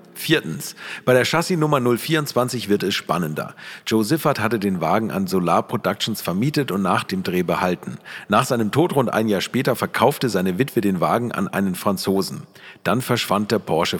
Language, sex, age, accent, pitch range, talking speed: German, male, 40-59, German, 95-125 Hz, 180 wpm